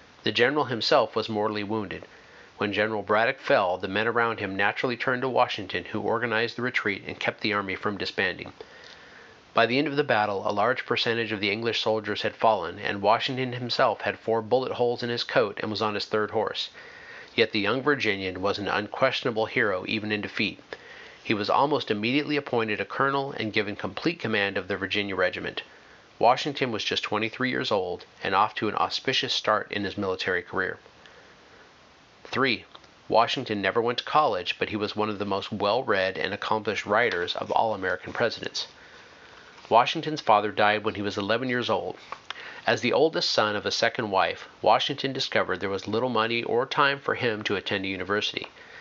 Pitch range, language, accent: 105-135 Hz, English, American